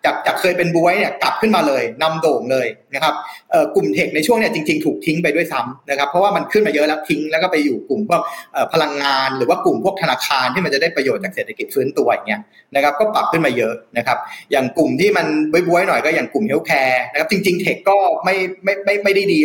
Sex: male